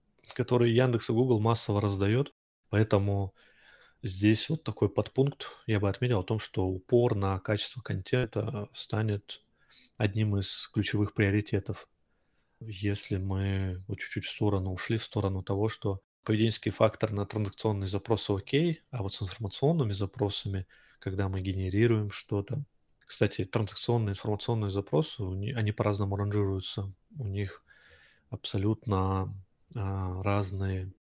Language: Russian